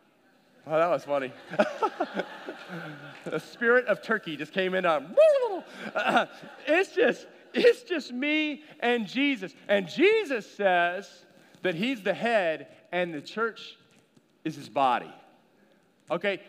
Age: 40-59